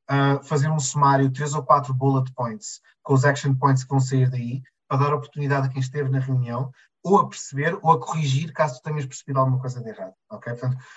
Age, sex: 20-39, male